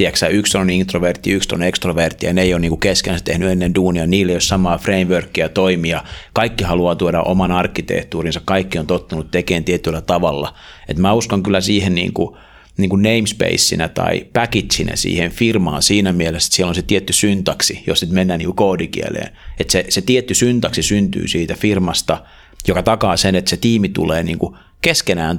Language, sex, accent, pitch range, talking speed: Finnish, male, native, 85-105 Hz, 175 wpm